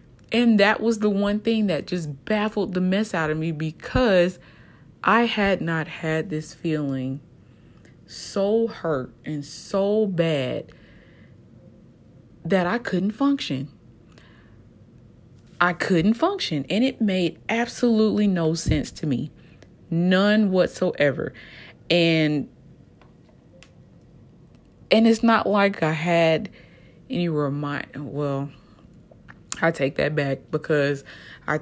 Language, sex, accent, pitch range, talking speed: English, female, American, 140-185 Hz, 110 wpm